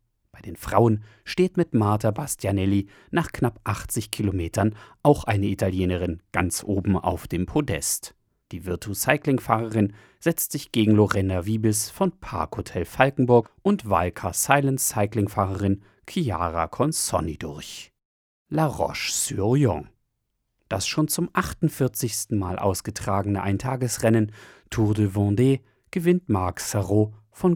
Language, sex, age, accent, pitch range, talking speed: German, male, 40-59, German, 100-125 Hz, 115 wpm